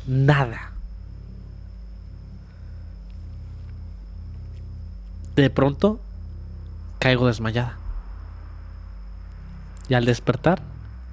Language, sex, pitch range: Spanish, male, 90-125 Hz